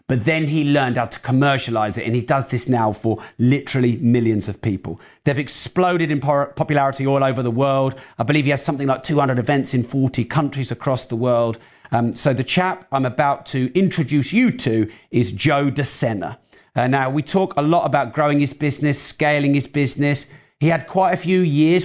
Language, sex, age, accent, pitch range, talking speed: English, male, 40-59, British, 120-145 Hz, 195 wpm